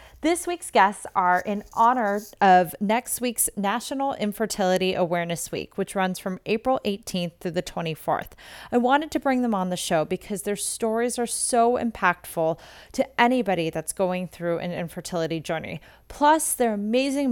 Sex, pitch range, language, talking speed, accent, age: female, 180-245 Hz, English, 160 wpm, American, 30-49